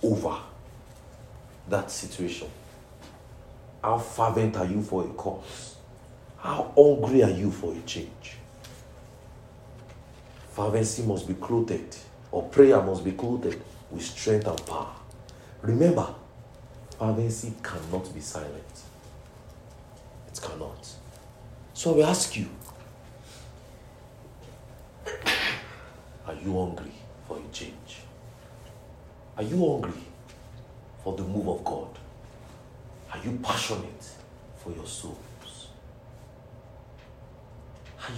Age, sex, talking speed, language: 50-69, male, 95 wpm, English